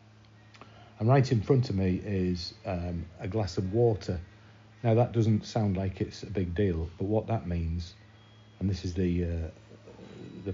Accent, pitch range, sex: British, 95-110 Hz, male